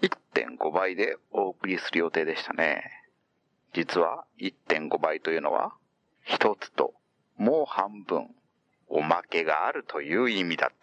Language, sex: Japanese, male